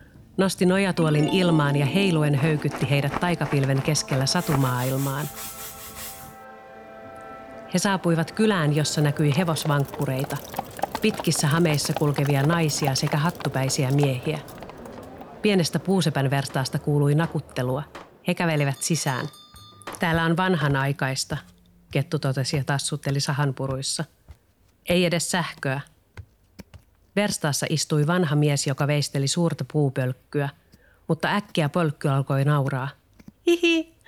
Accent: native